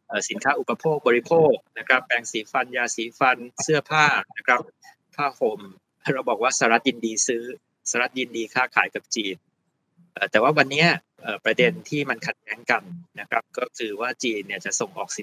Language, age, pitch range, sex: Thai, 20-39, 115-150 Hz, male